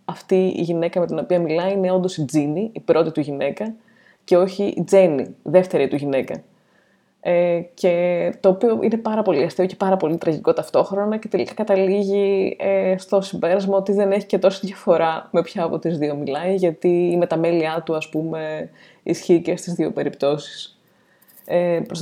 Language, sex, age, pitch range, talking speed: Greek, female, 20-39, 155-190 Hz, 180 wpm